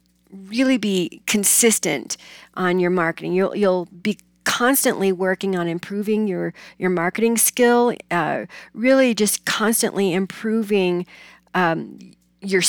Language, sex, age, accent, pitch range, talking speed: English, female, 40-59, American, 180-230 Hz, 115 wpm